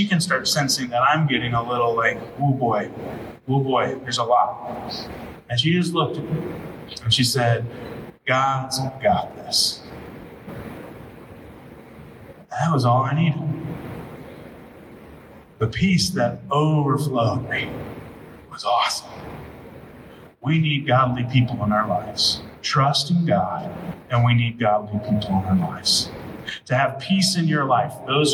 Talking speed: 140 wpm